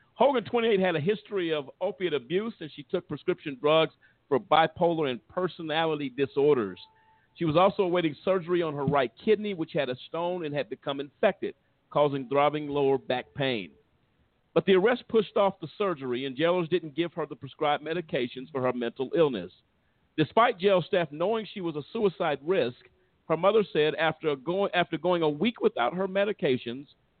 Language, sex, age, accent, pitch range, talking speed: English, male, 50-69, American, 140-195 Hz, 175 wpm